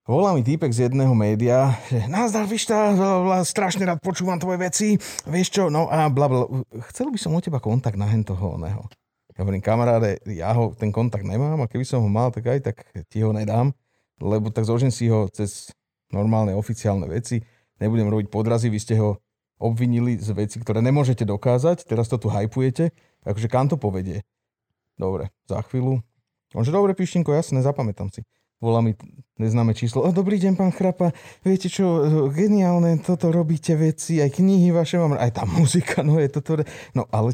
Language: Slovak